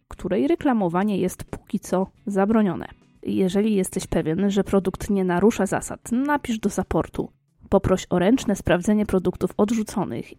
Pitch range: 180-225 Hz